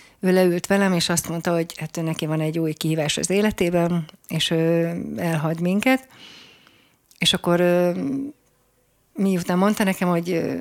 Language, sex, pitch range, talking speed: Hungarian, female, 165-185 Hz, 140 wpm